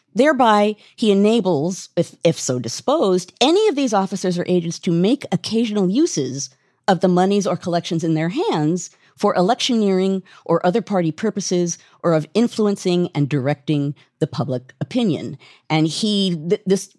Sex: female